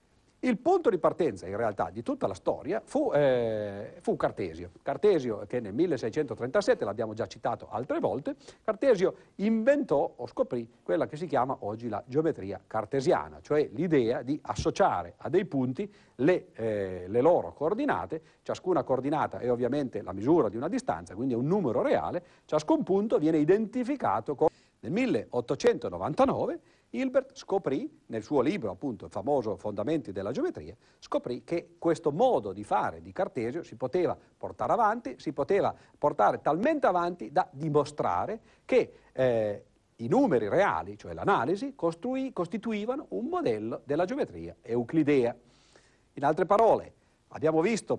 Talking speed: 145 wpm